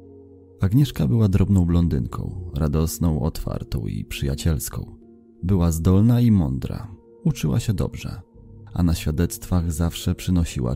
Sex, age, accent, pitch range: male, 30-49, native, 85-100 Hz